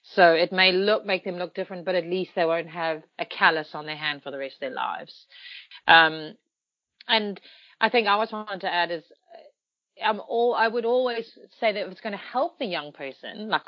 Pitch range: 165-210 Hz